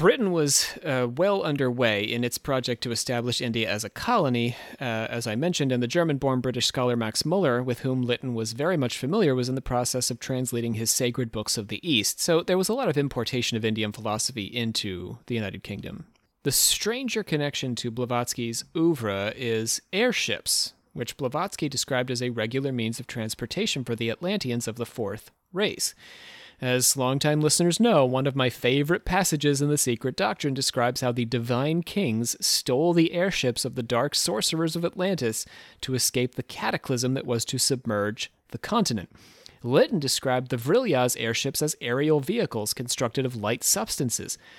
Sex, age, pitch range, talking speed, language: male, 30-49, 120-145 Hz, 175 wpm, English